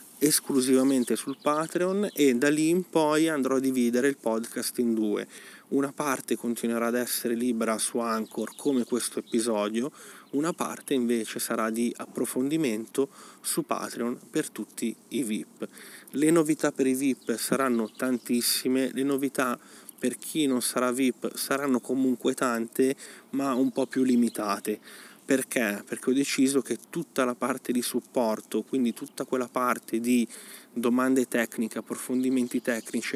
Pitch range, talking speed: 115-135 Hz, 145 wpm